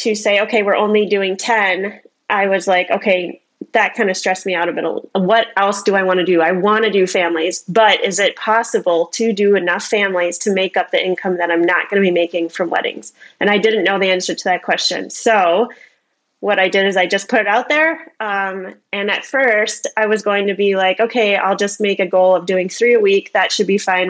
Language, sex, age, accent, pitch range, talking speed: English, female, 20-39, American, 185-220 Hz, 245 wpm